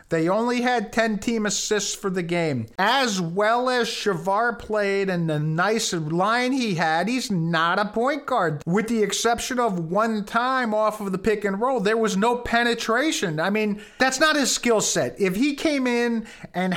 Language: English